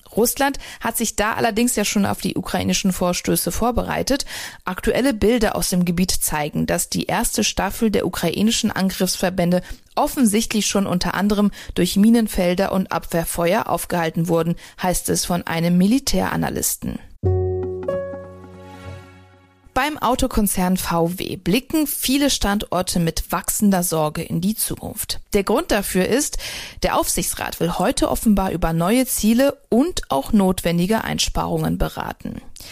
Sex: female